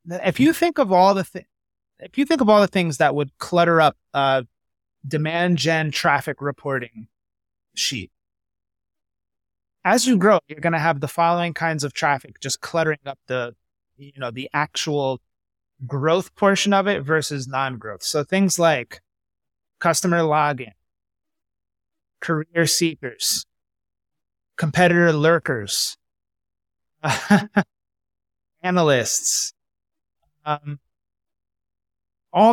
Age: 30-49